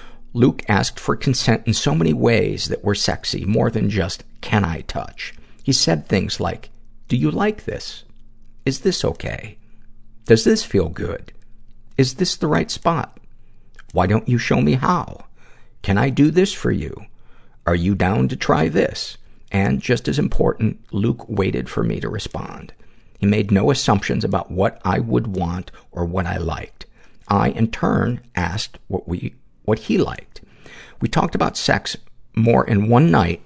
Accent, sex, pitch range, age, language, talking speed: American, male, 95-120 Hz, 50-69, English, 170 wpm